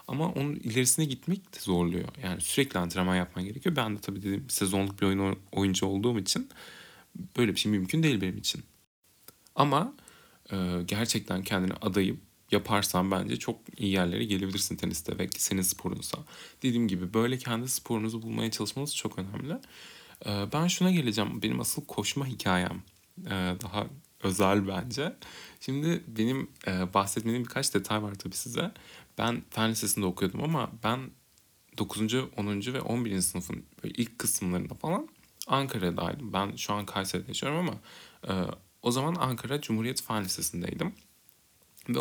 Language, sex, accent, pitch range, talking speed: Turkish, male, native, 95-130 Hz, 145 wpm